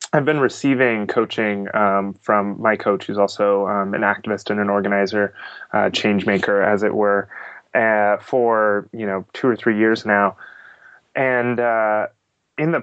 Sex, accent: male, American